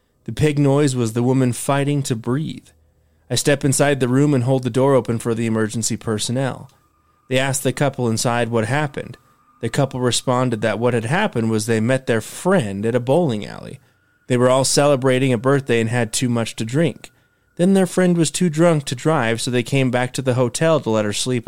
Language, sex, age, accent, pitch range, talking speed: English, male, 30-49, American, 115-140 Hz, 215 wpm